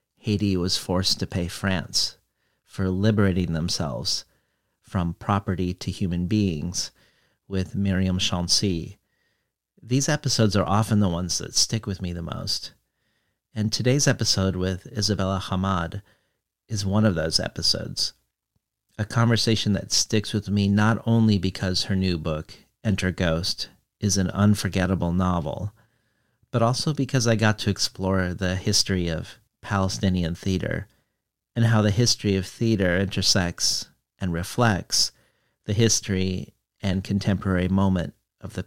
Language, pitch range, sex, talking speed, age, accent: English, 95-110 Hz, male, 135 wpm, 40-59, American